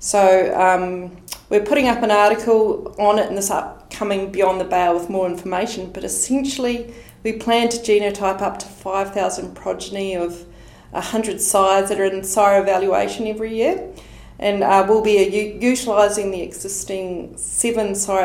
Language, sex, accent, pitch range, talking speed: English, female, Australian, 180-210 Hz, 160 wpm